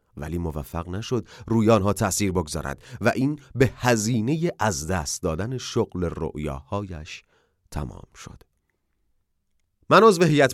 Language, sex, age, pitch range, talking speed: Persian, male, 30-49, 90-130 Hz, 120 wpm